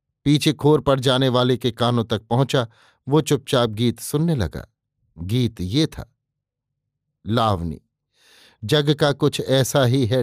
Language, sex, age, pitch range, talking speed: Hindi, male, 50-69, 115-140 Hz, 140 wpm